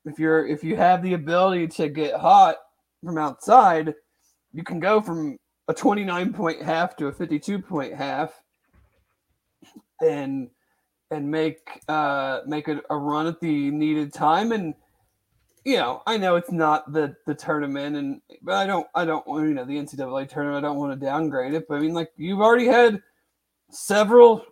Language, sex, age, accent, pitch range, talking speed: English, male, 40-59, American, 150-205 Hz, 180 wpm